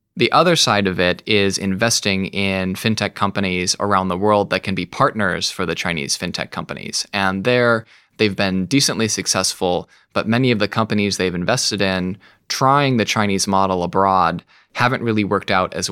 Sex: male